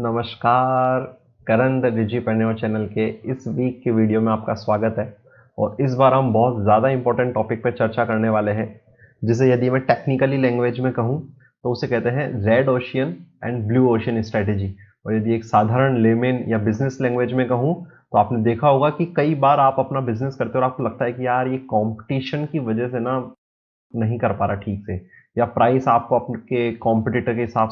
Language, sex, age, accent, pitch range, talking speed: Hindi, male, 20-39, native, 110-130 Hz, 195 wpm